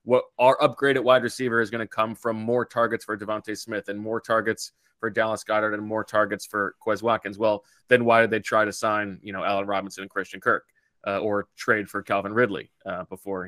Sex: male